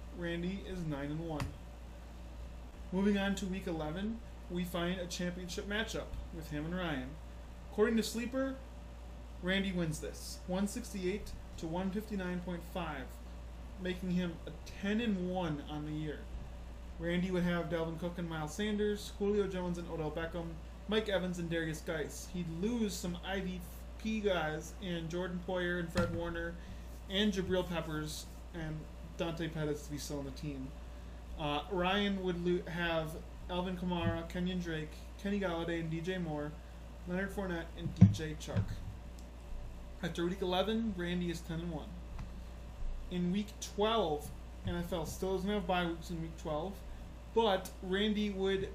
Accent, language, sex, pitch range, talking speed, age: American, English, male, 150-190 Hz, 140 wpm, 20-39